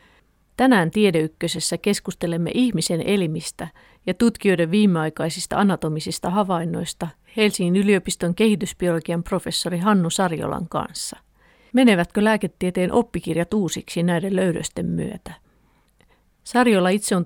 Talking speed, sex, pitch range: 95 wpm, female, 175-210 Hz